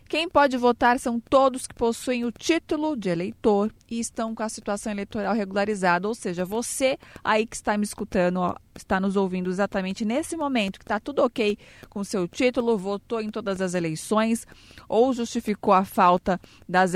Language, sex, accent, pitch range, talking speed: Portuguese, female, Brazilian, 190-225 Hz, 175 wpm